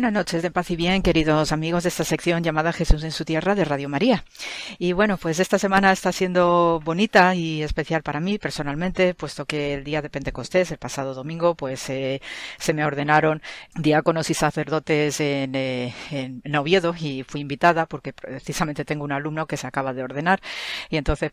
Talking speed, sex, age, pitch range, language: 195 wpm, female, 40-59, 140-160 Hz, Spanish